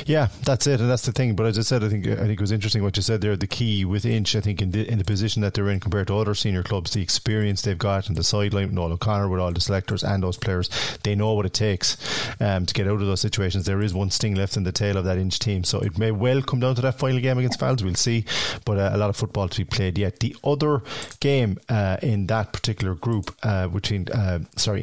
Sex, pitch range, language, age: male, 100-115 Hz, English, 30-49